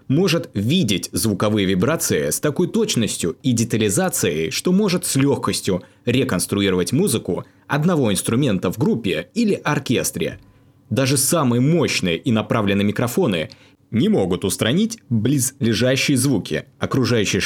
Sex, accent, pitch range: male, native, 100-140 Hz